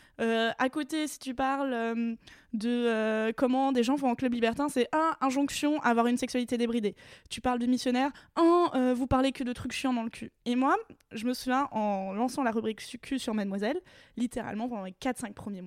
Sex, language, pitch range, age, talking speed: female, French, 215-260 Hz, 20-39, 210 wpm